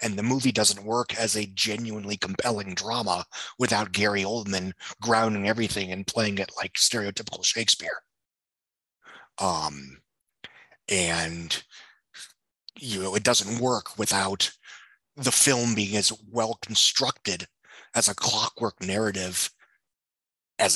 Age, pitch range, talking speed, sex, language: 30-49, 100-120 Hz, 115 wpm, male, English